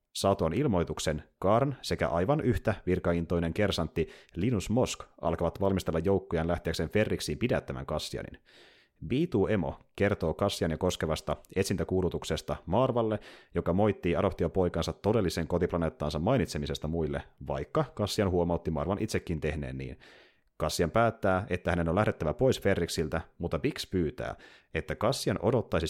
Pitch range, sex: 80-100 Hz, male